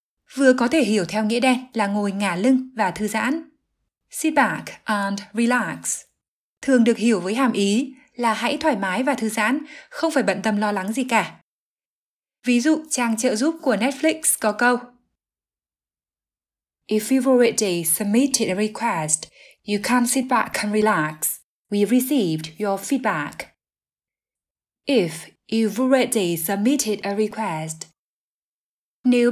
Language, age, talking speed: Vietnamese, 20-39, 145 wpm